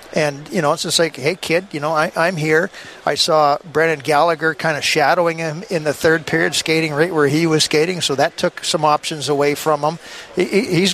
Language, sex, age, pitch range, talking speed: English, male, 50-69, 150-170 Hz, 215 wpm